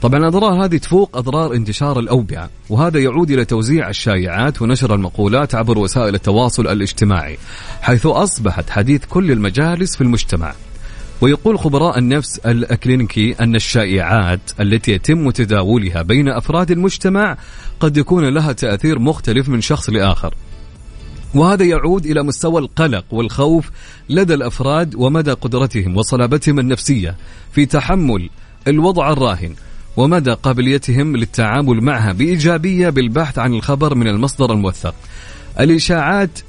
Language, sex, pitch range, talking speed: Arabic, male, 105-150 Hz, 120 wpm